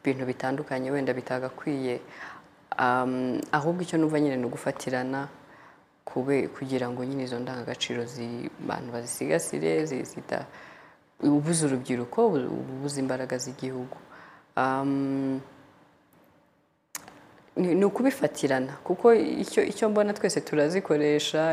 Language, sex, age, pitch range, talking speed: English, female, 20-39, 130-155 Hz, 100 wpm